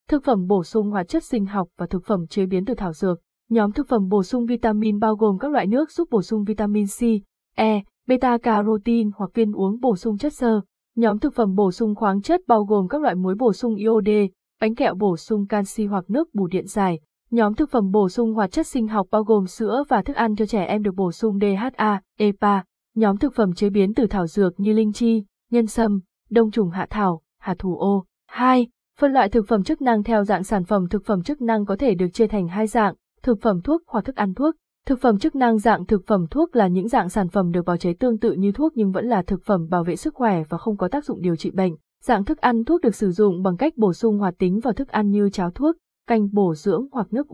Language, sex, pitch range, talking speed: Vietnamese, female, 195-235 Hz, 250 wpm